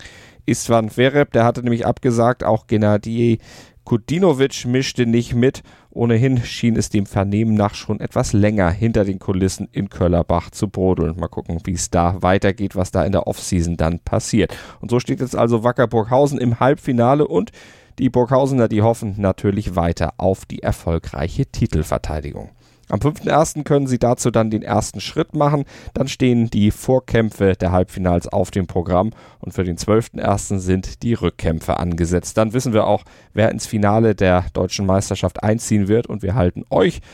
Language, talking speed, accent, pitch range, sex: German, 170 wpm, German, 95-120 Hz, male